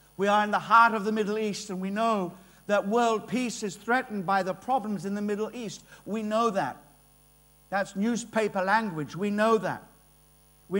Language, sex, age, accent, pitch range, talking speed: English, male, 50-69, British, 185-230 Hz, 190 wpm